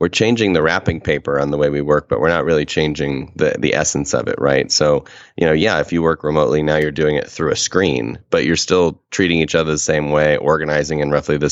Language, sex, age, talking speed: English, male, 30-49, 255 wpm